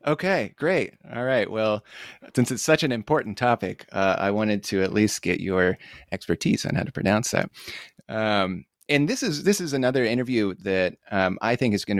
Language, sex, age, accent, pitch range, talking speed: English, male, 30-49, American, 95-115 Hz, 195 wpm